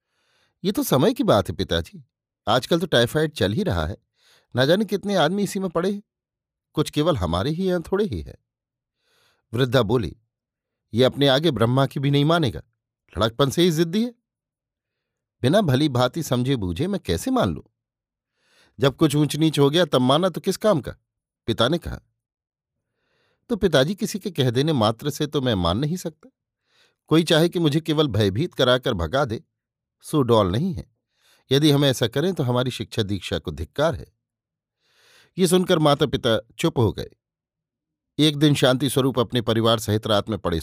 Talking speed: 175 wpm